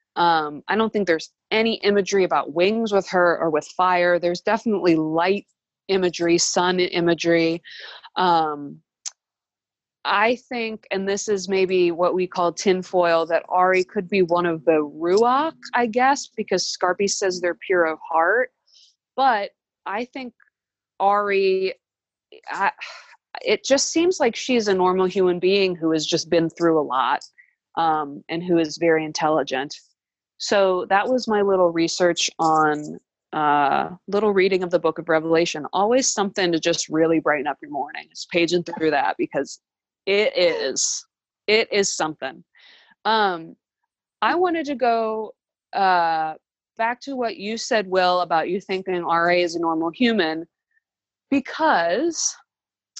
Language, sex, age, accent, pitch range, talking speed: English, female, 20-39, American, 170-235 Hz, 145 wpm